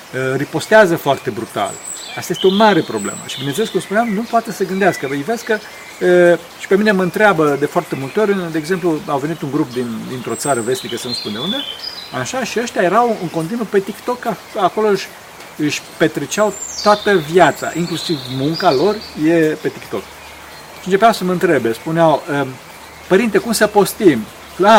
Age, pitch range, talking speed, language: 40-59, 140-205 Hz, 180 wpm, Romanian